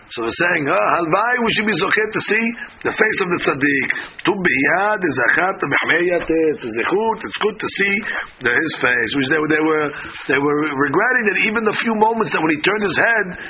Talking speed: 215 wpm